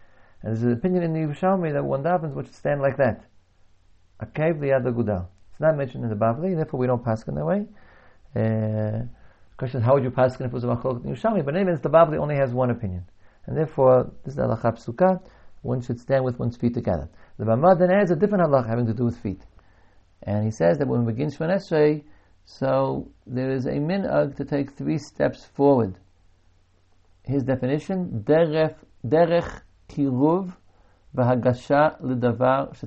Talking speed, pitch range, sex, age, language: 195 wpm, 95-135 Hz, male, 50-69, English